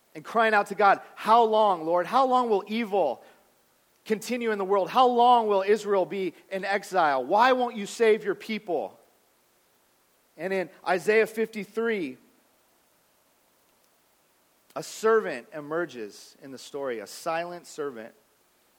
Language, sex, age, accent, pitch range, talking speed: English, male, 40-59, American, 160-215 Hz, 135 wpm